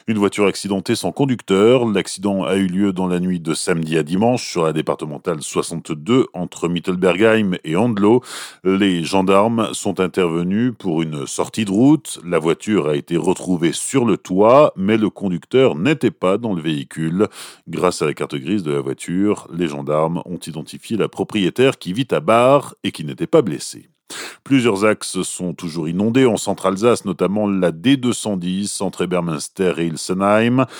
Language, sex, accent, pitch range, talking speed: French, male, French, 85-115 Hz, 170 wpm